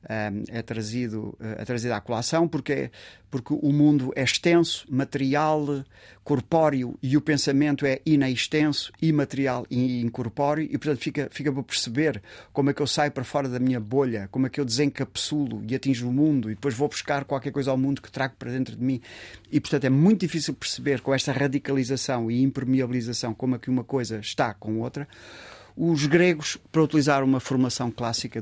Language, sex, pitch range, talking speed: Portuguese, male, 115-145 Hz, 190 wpm